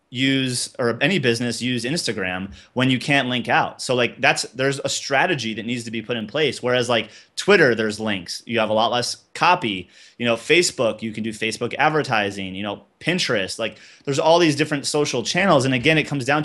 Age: 30-49